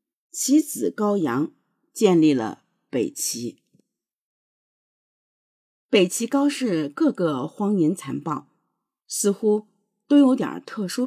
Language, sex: Chinese, female